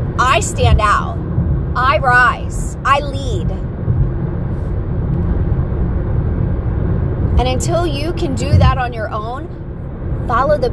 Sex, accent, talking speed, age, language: female, American, 100 wpm, 30-49, English